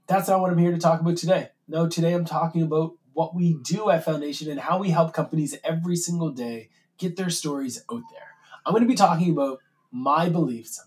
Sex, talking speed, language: male, 220 wpm, English